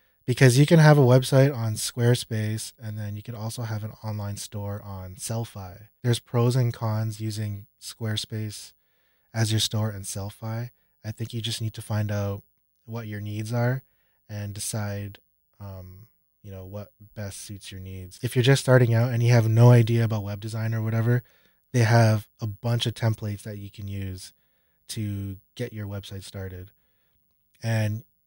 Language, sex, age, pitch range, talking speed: English, male, 20-39, 100-120 Hz, 175 wpm